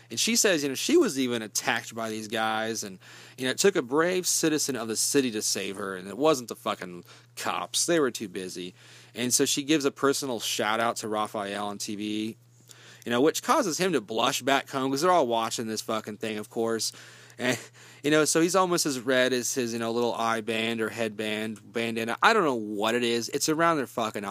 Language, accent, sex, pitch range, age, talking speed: English, American, male, 110-145 Hz, 30-49, 230 wpm